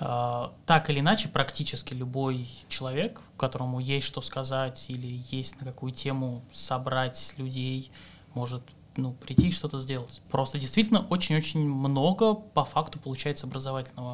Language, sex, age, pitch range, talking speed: Russian, male, 20-39, 130-155 Hz, 130 wpm